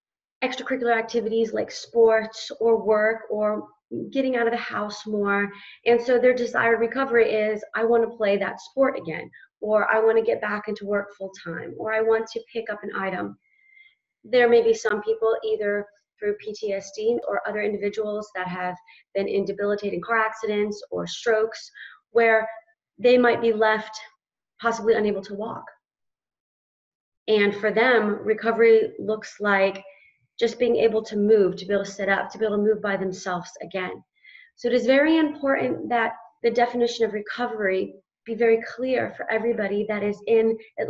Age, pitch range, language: 30-49, 210-235 Hz, English